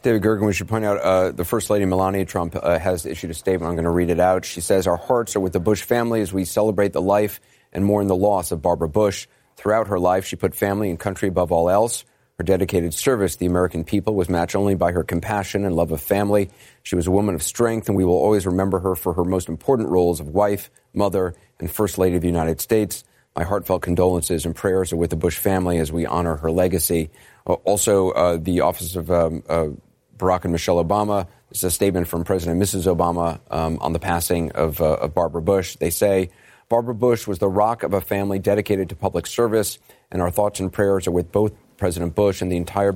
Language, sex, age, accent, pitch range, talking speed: English, male, 30-49, American, 85-100 Hz, 235 wpm